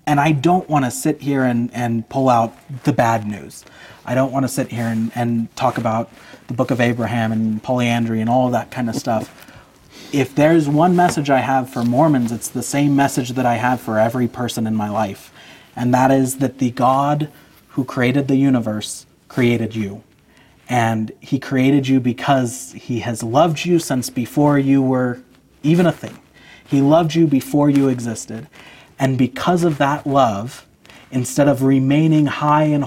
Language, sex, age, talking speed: English, male, 30-49, 185 wpm